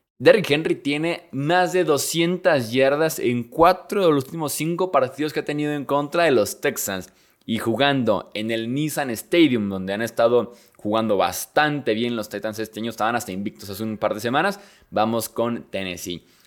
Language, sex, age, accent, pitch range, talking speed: Spanish, male, 20-39, Mexican, 110-145 Hz, 180 wpm